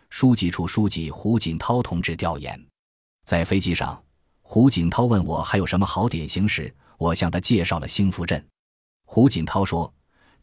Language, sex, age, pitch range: Chinese, male, 20-39, 85-115 Hz